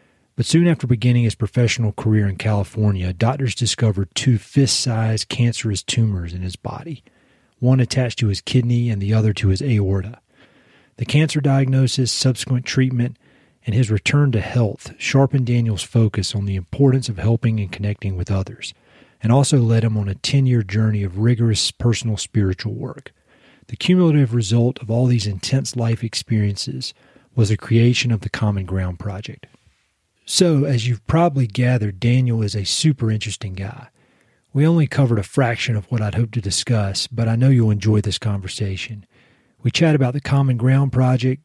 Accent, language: American, English